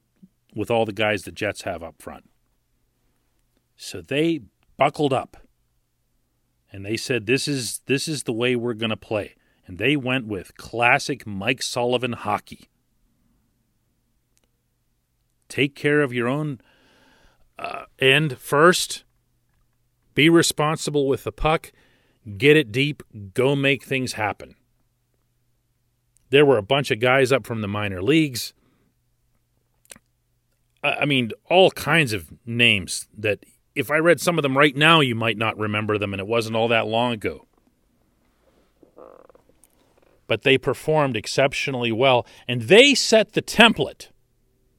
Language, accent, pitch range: English, American, 115-145 Hz